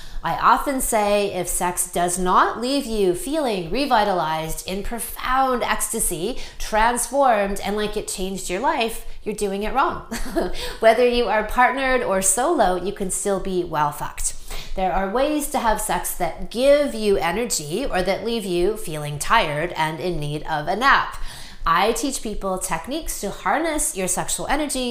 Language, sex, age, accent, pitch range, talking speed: English, female, 30-49, American, 175-225 Hz, 165 wpm